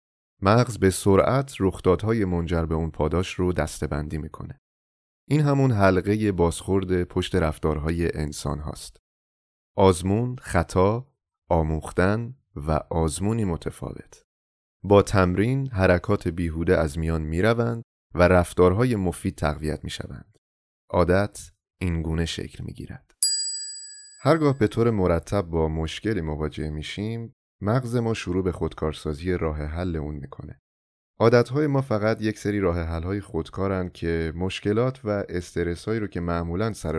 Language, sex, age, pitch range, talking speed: Persian, male, 30-49, 80-105 Hz, 120 wpm